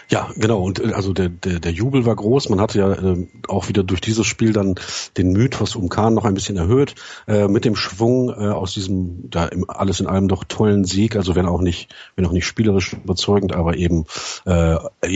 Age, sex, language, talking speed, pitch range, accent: 40-59, male, German, 220 wpm, 95-115 Hz, German